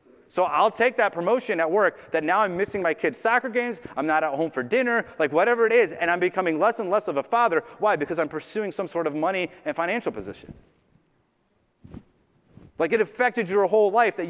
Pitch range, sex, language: 155-235 Hz, male, English